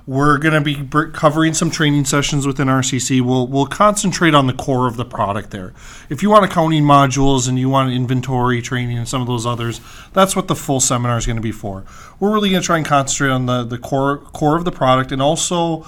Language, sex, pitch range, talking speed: English, male, 125-150 Hz, 235 wpm